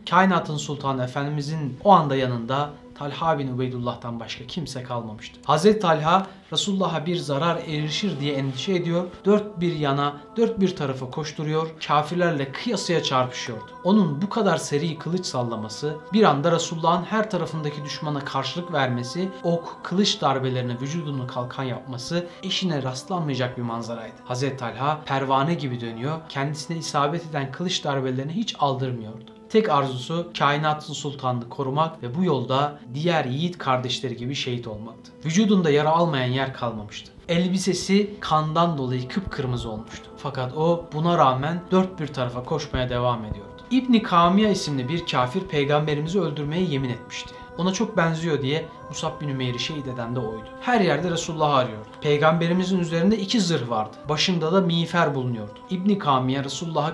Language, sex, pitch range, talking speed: Turkish, male, 130-170 Hz, 145 wpm